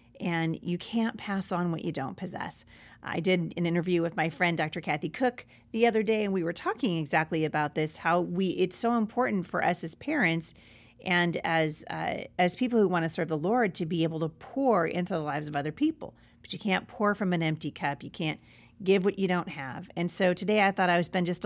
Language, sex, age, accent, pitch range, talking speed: English, female, 40-59, American, 155-190 Hz, 235 wpm